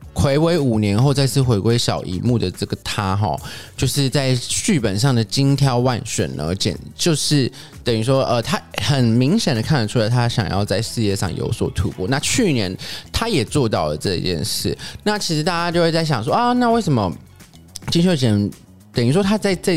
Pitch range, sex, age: 110-145 Hz, male, 20-39